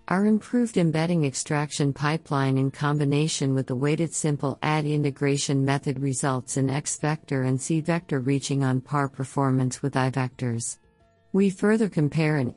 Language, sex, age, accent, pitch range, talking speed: English, female, 50-69, American, 130-150 Hz, 140 wpm